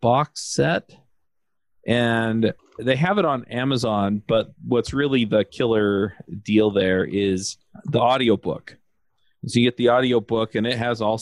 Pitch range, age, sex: 100-115 Hz, 40-59, male